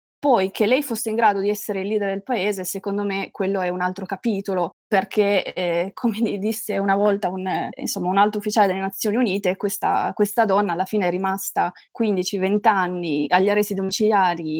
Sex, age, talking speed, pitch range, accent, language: female, 20-39, 180 wpm, 185-210 Hz, native, Italian